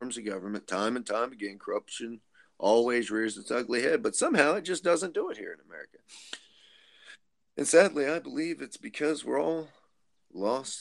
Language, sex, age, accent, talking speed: English, male, 40-59, American, 170 wpm